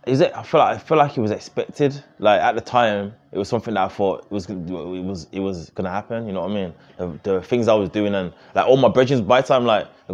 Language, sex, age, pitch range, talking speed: English, male, 20-39, 95-115 Hz, 290 wpm